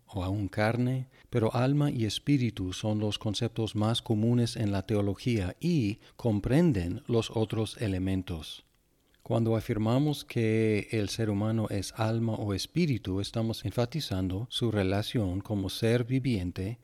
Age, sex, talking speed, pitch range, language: 40-59, male, 130 wpm, 95-120 Hz, Spanish